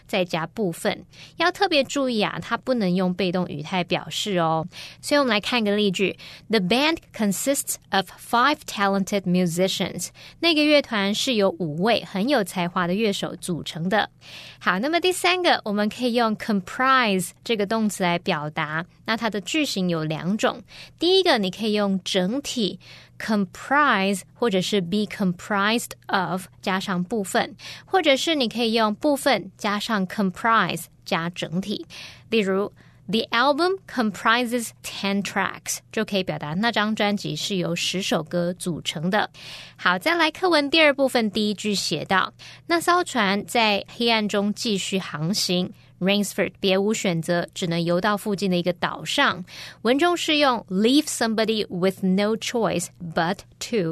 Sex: female